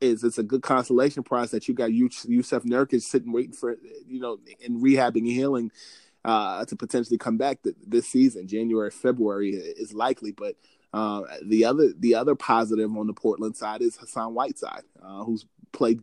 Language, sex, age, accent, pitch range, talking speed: English, male, 20-39, American, 110-135 Hz, 180 wpm